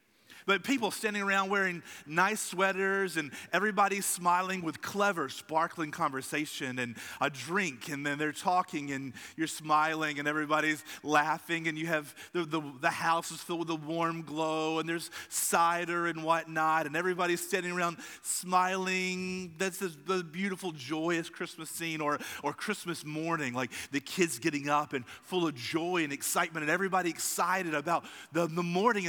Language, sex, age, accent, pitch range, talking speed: English, male, 40-59, American, 145-190 Hz, 160 wpm